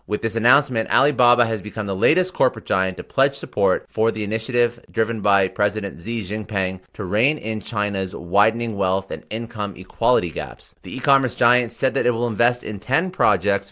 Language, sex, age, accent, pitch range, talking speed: English, male, 30-49, American, 105-125 Hz, 185 wpm